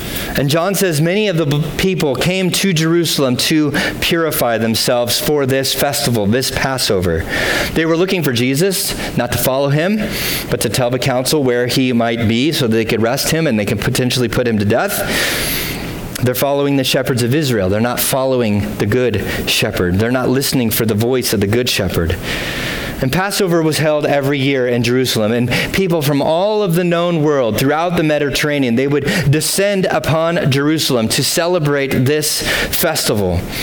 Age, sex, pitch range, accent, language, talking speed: 30-49, male, 120-155 Hz, American, English, 175 wpm